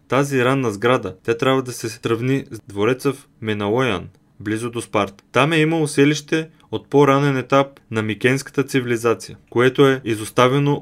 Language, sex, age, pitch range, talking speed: Bulgarian, male, 20-39, 110-140 Hz, 155 wpm